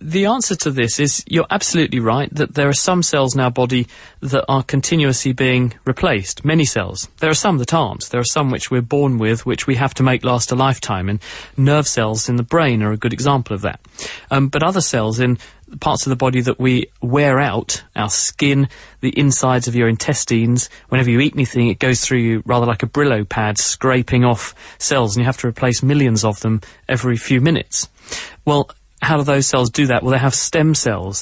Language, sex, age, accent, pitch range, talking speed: English, male, 30-49, British, 115-140 Hz, 220 wpm